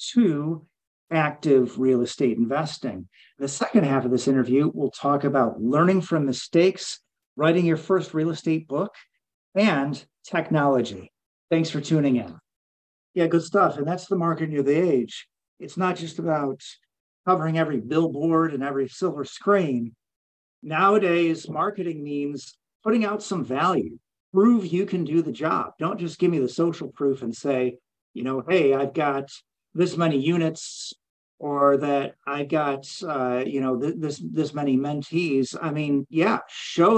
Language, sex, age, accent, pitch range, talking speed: English, male, 50-69, American, 135-175 Hz, 155 wpm